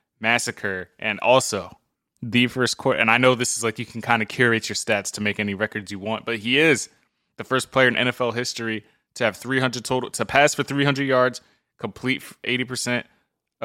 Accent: American